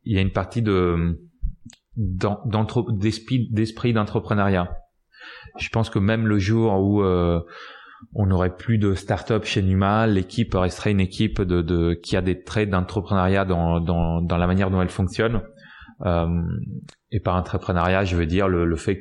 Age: 30-49